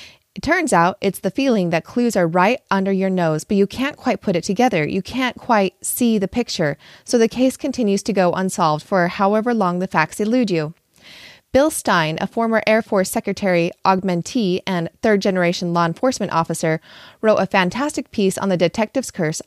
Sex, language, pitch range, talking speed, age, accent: female, English, 170-225 Hz, 190 wpm, 20-39, American